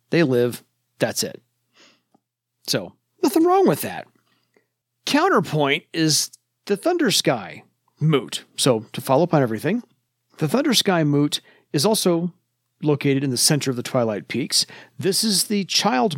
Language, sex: English, male